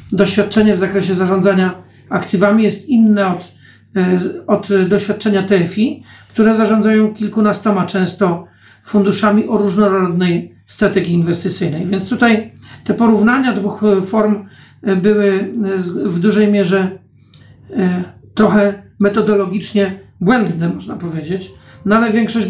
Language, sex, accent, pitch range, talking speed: Polish, male, native, 190-220 Hz, 100 wpm